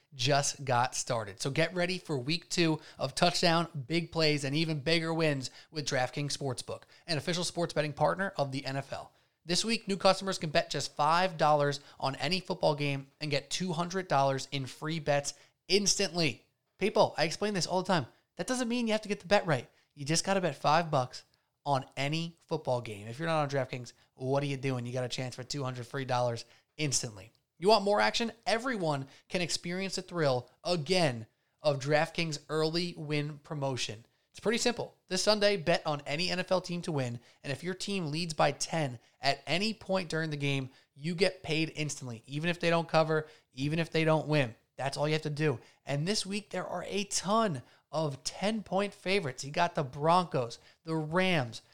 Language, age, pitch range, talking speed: English, 20-39, 140-175 Hz, 195 wpm